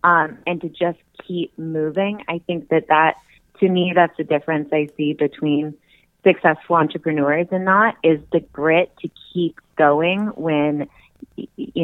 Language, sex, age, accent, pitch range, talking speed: English, female, 20-39, American, 150-170 Hz, 150 wpm